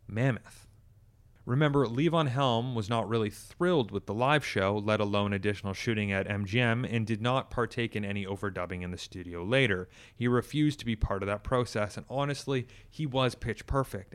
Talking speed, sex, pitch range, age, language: 180 wpm, male, 100-125 Hz, 30-49, English